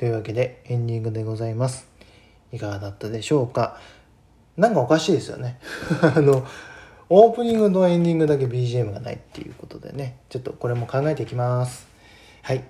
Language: Japanese